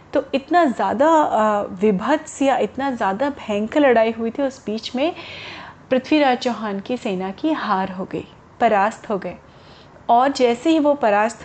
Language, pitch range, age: Hindi, 210-275 Hz, 30-49